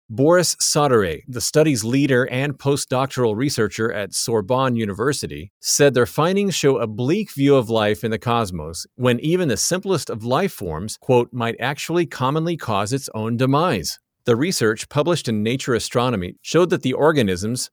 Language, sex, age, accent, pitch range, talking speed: English, male, 50-69, American, 110-145 Hz, 165 wpm